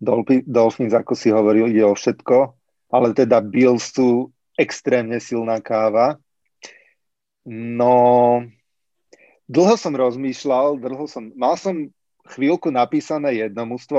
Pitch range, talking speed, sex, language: 115-140 Hz, 110 wpm, male, Slovak